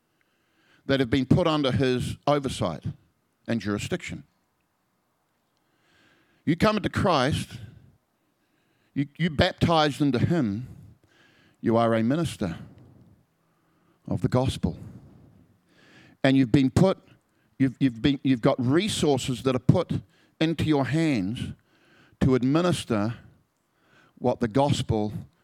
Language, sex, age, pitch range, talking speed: English, male, 50-69, 125-145 Hz, 110 wpm